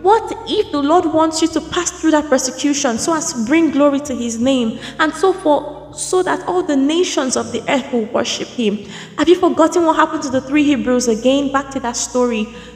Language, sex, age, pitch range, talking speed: English, female, 20-39, 245-350 Hz, 215 wpm